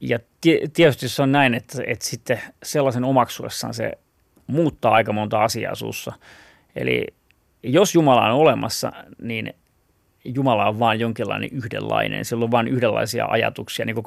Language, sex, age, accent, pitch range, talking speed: Finnish, male, 30-49, native, 110-135 Hz, 145 wpm